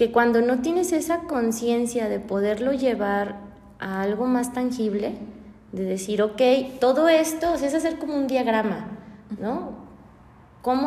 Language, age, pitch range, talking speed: Spanish, 20-39, 205-255 Hz, 150 wpm